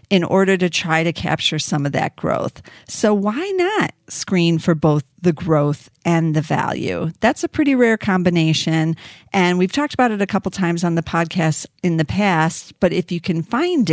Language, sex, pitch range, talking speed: English, female, 155-185 Hz, 200 wpm